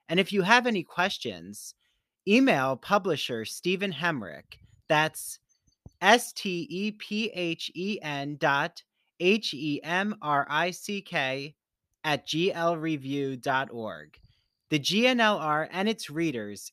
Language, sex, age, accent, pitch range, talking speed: English, male, 30-49, American, 150-200 Hz, 120 wpm